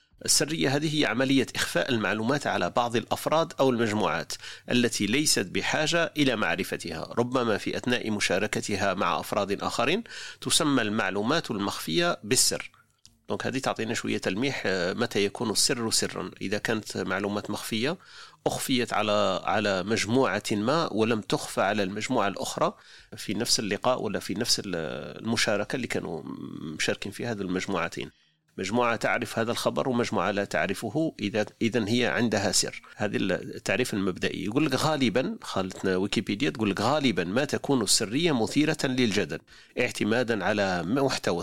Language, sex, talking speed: Arabic, male, 135 wpm